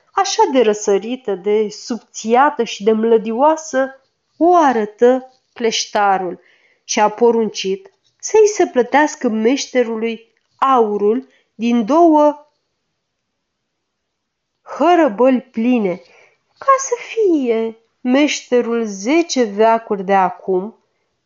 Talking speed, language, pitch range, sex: 90 wpm, Romanian, 210-270 Hz, female